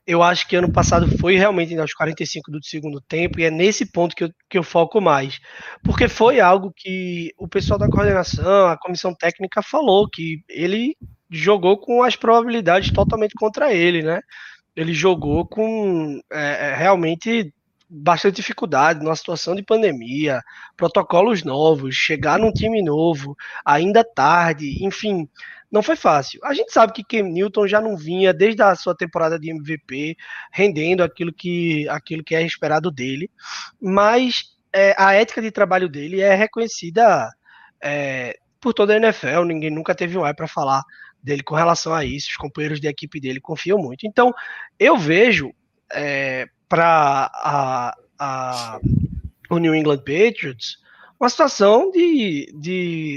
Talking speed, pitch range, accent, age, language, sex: 155 wpm, 155-205 Hz, Brazilian, 20-39, Portuguese, male